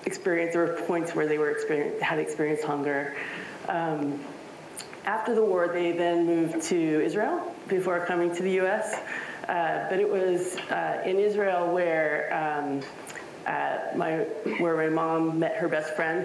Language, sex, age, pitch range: English, female, 30-49, 155-185 Hz